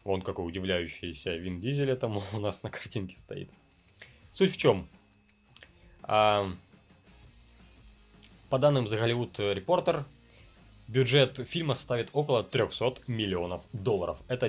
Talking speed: 110 wpm